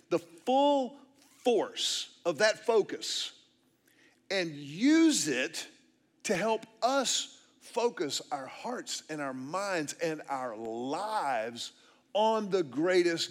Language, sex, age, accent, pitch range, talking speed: English, male, 50-69, American, 180-285 Hz, 110 wpm